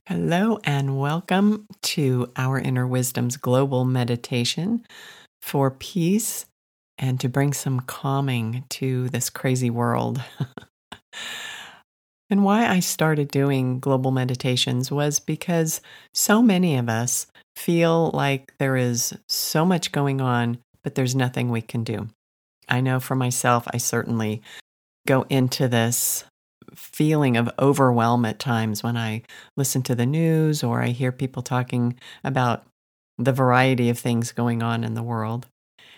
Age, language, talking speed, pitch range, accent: 40-59, English, 135 wpm, 120-145 Hz, American